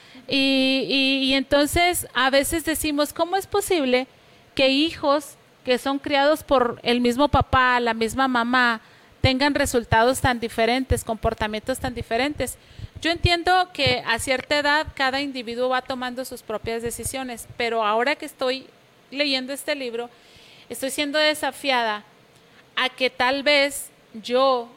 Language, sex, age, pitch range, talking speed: Spanish, female, 40-59, 225-265 Hz, 135 wpm